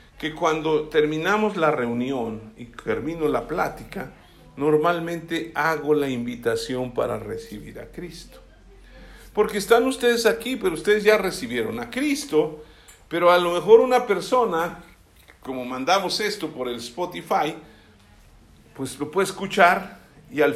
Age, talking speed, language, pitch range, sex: 50-69, 130 wpm, Spanish, 135-210 Hz, male